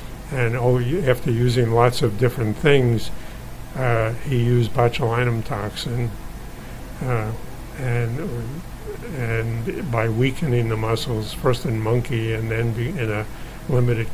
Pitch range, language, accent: 115-125 Hz, English, American